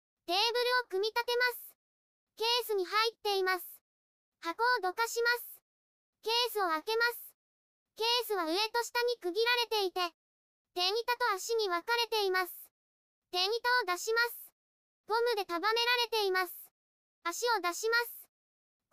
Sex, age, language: male, 20-39, Japanese